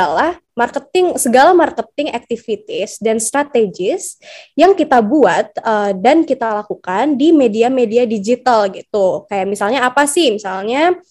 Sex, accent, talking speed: female, native, 125 wpm